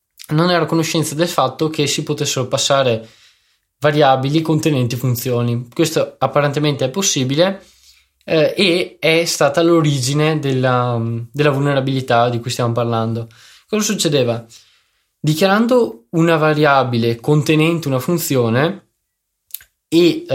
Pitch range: 120-155 Hz